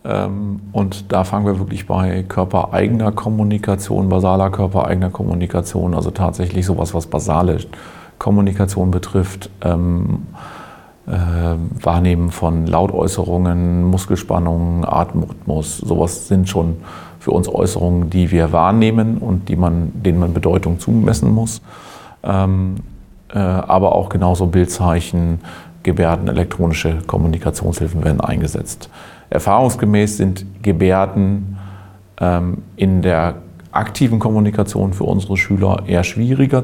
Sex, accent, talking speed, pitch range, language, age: male, German, 105 wpm, 90-105 Hz, German, 40-59